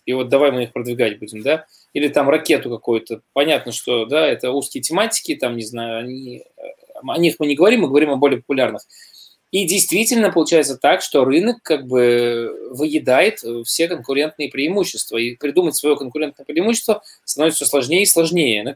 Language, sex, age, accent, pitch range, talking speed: Russian, male, 20-39, native, 135-190 Hz, 175 wpm